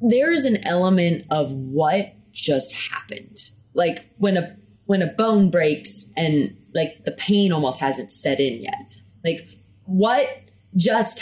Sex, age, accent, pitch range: female, 20-39, American, 145-215 Hz